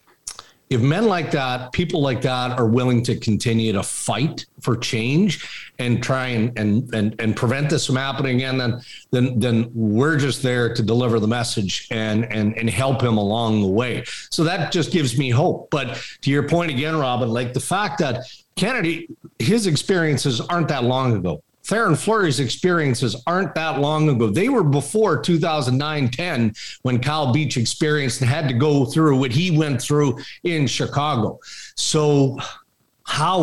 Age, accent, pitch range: 50-69, American, 115-150 Hz